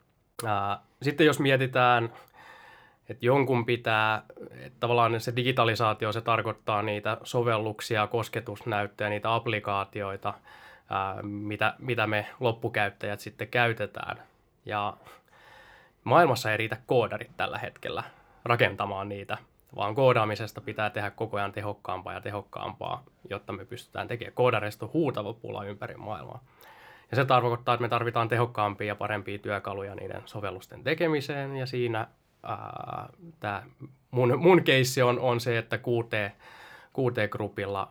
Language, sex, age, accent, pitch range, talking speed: Finnish, male, 20-39, native, 100-120 Hz, 120 wpm